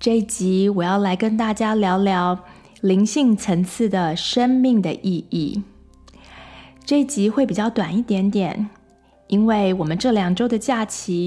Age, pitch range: 20-39, 180-230 Hz